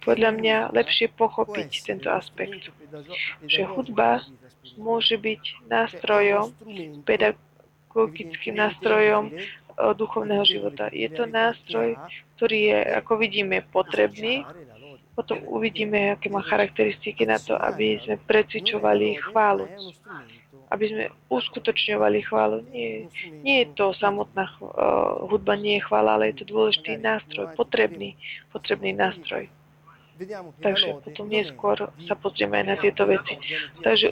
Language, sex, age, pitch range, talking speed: Slovak, female, 20-39, 150-225 Hz, 115 wpm